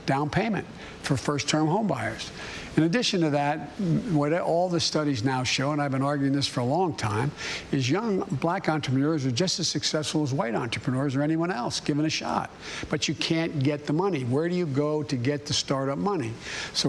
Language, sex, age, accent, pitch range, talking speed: English, male, 60-79, American, 135-160 Hz, 210 wpm